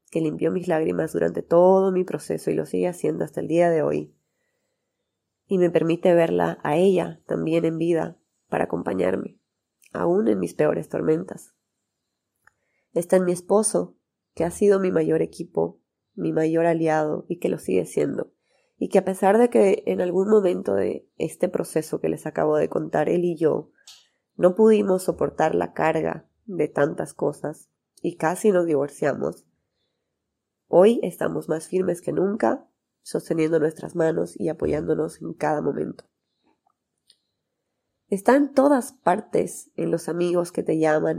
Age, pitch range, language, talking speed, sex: 30-49, 160-190 Hz, Spanish, 155 wpm, female